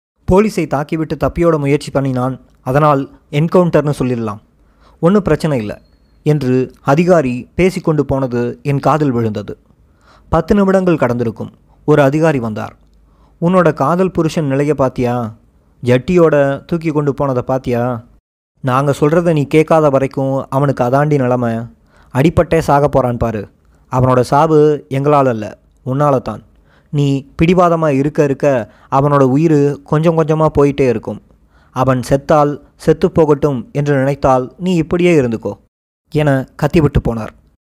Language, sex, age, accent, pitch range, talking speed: Tamil, male, 20-39, native, 125-160 Hz, 120 wpm